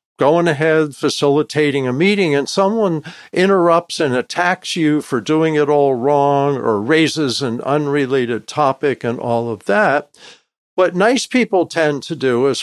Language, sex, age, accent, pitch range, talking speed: English, male, 50-69, American, 135-175 Hz, 150 wpm